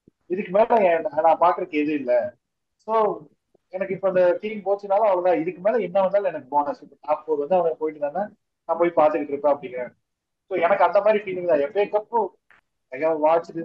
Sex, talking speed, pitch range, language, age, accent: male, 70 wpm, 145-200 Hz, Tamil, 20-39, native